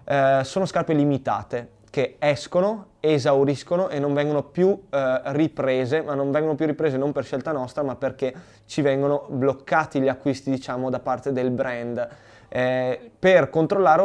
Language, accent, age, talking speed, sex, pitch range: Italian, native, 20-39, 160 wpm, male, 130-155 Hz